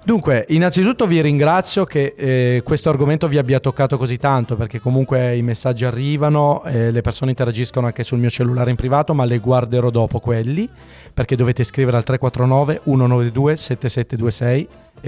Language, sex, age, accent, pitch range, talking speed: Italian, male, 30-49, native, 115-150 Hz, 150 wpm